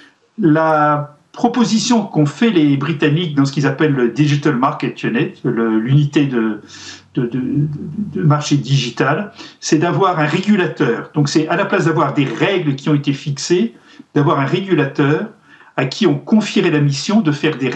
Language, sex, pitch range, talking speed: French, male, 145-185 Hz, 160 wpm